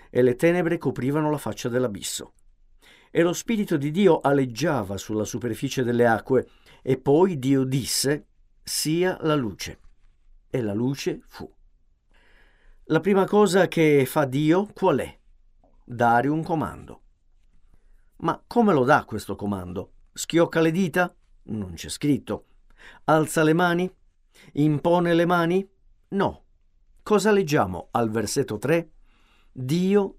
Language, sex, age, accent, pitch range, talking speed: Italian, male, 50-69, native, 115-175 Hz, 125 wpm